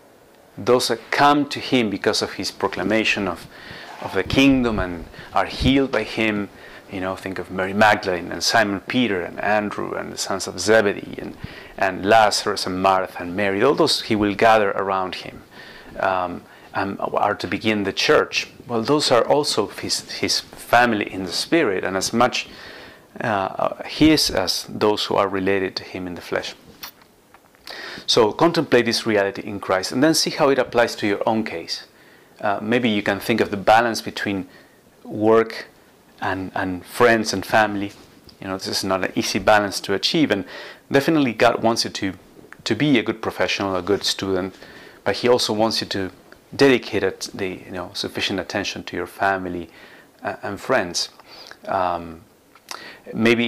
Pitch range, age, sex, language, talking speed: 95-115 Hz, 30-49, male, English, 175 wpm